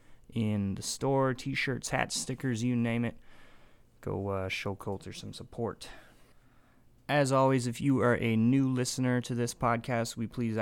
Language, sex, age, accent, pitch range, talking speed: English, male, 20-39, American, 105-125 Hz, 165 wpm